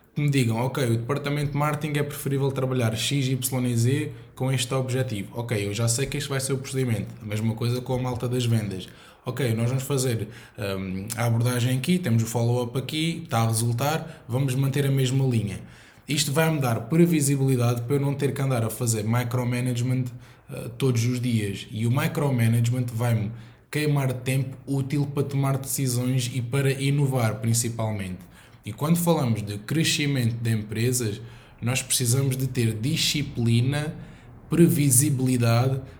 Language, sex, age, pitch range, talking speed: Portuguese, male, 20-39, 115-140 Hz, 165 wpm